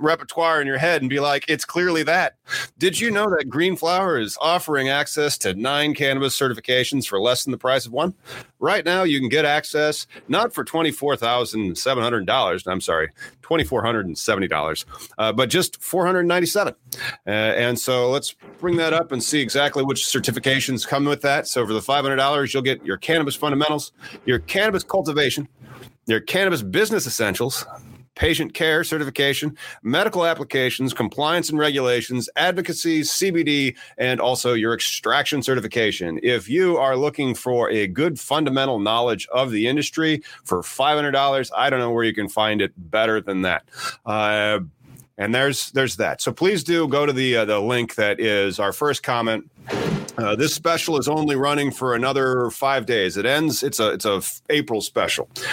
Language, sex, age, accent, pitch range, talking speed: English, male, 40-59, American, 125-150 Hz, 165 wpm